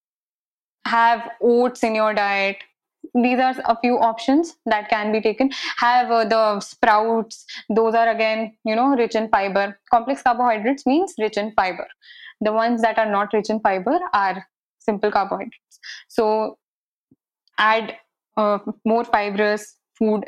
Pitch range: 215-250 Hz